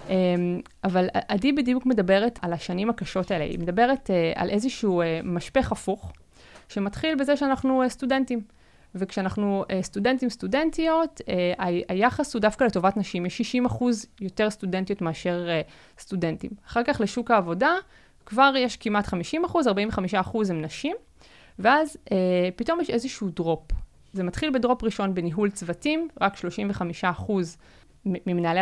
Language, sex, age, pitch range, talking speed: Hebrew, female, 20-39, 185-245 Hz, 145 wpm